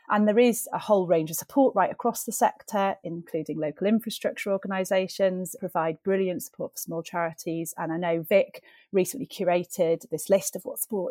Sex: female